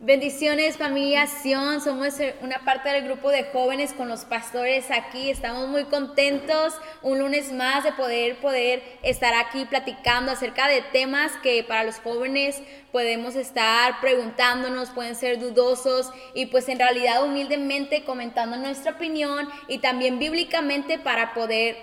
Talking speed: 145 wpm